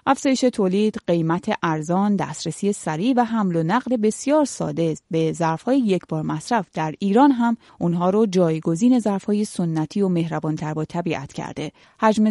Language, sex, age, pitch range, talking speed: Persian, female, 30-49, 165-225 Hz, 150 wpm